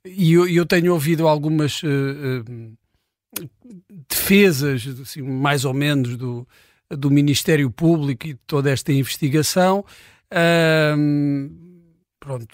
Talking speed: 90 wpm